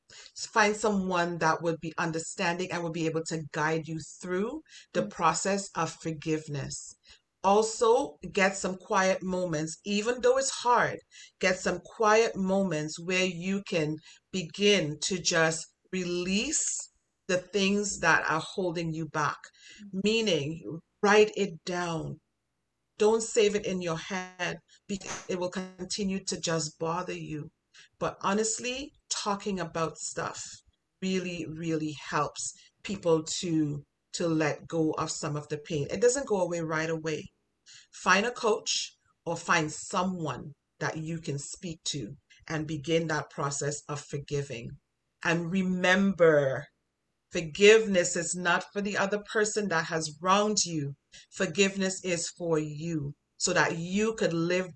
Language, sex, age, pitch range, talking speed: English, female, 40-59, 160-195 Hz, 140 wpm